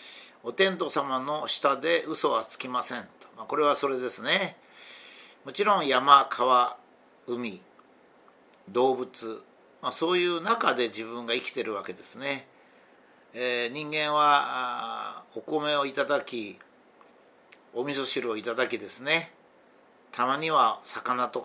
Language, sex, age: Japanese, male, 60-79